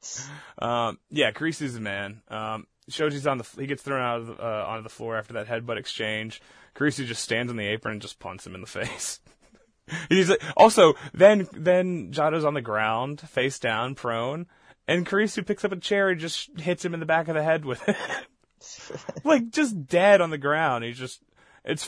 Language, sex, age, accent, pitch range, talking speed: English, male, 20-39, American, 110-155 Hz, 205 wpm